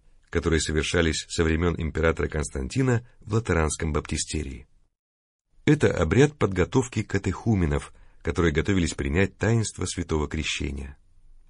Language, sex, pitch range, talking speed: Russian, male, 80-105 Hz, 100 wpm